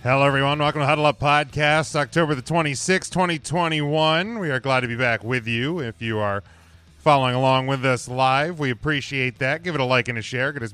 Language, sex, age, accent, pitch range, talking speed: English, male, 30-49, American, 115-150 Hz, 220 wpm